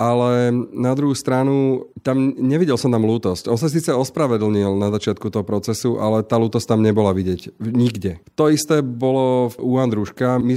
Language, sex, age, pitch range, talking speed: Slovak, male, 30-49, 110-125 Hz, 170 wpm